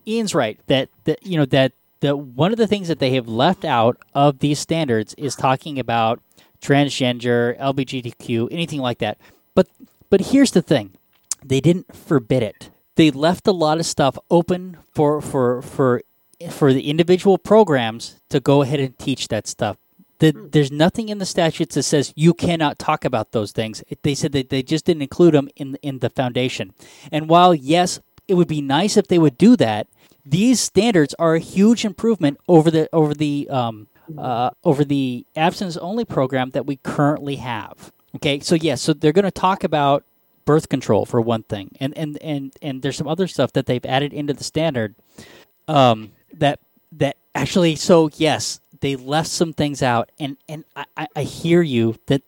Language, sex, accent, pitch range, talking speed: English, male, American, 130-165 Hz, 190 wpm